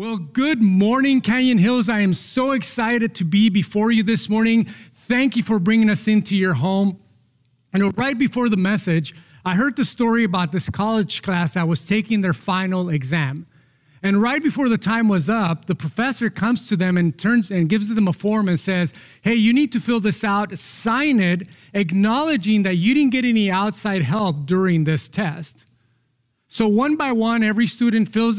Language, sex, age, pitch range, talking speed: English, male, 40-59, 170-225 Hz, 190 wpm